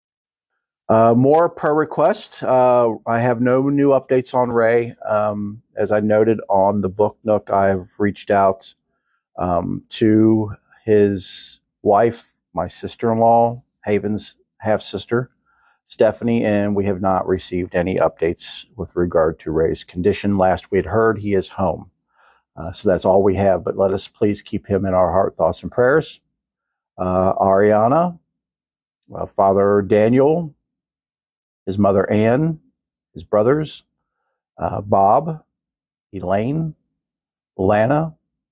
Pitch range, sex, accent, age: 100-140 Hz, male, American, 50-69